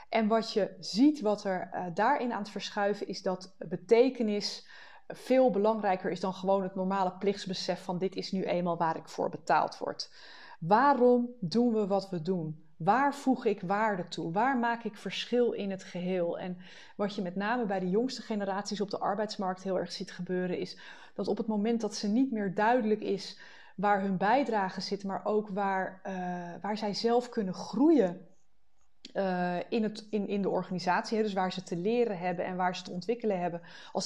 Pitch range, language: 185-230 Hz, Dutch